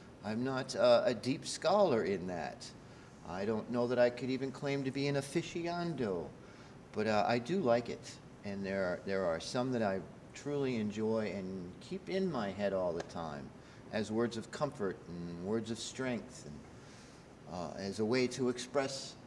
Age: 50-69